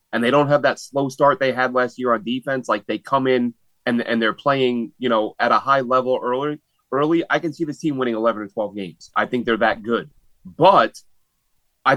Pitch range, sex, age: 130-160 Hz, male, 30-49